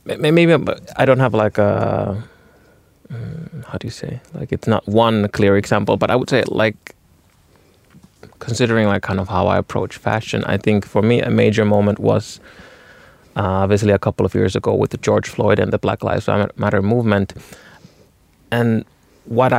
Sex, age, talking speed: male, 20-39, 170 wpm